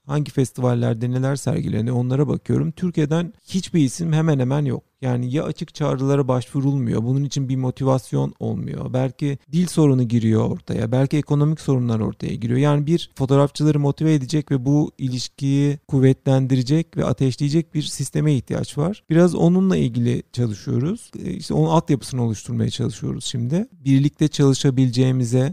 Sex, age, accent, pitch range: male, 40-59, native, 125-155 Hz